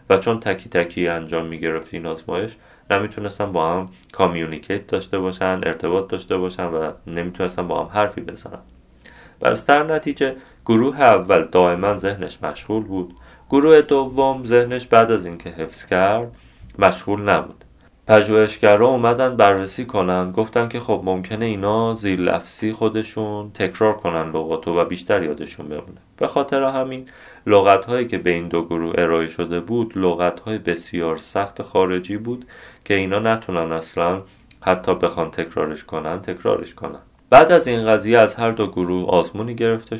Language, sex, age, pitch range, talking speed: Persian, male, 30-49, 85-110 Hz, 155 wpm